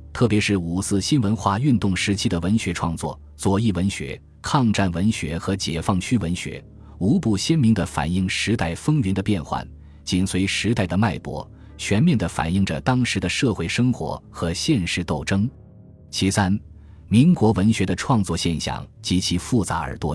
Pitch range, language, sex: 85-110 Hz, Chinese, male